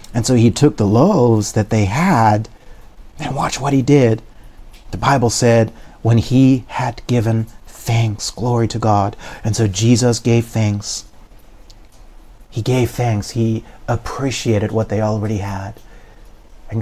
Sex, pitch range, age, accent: male, 105-115 Hz, 40-59, American